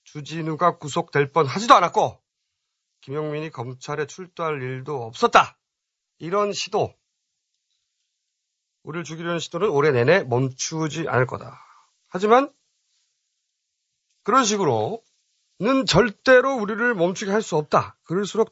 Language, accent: Korean, native